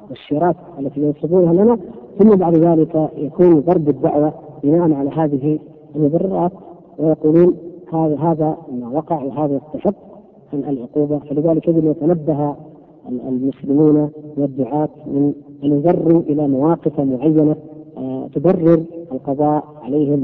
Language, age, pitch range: Arabic, 40-59, 145-175 Hz